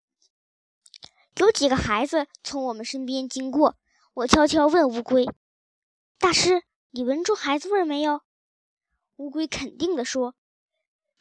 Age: 10-29